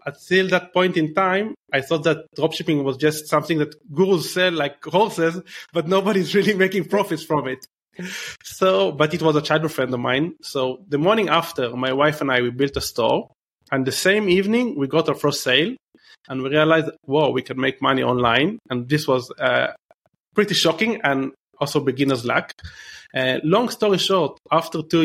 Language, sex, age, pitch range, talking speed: English, male, 30-49, 130-170 Hz, 190 wpm